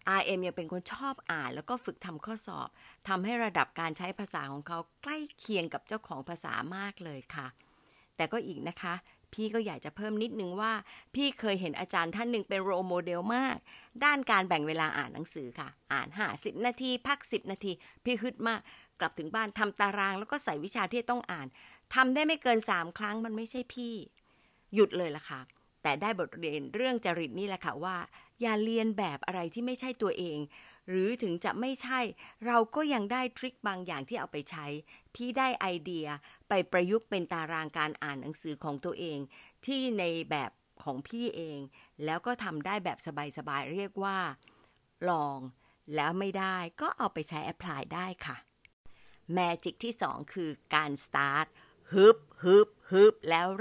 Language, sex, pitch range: Thai, female, 160-225 Hz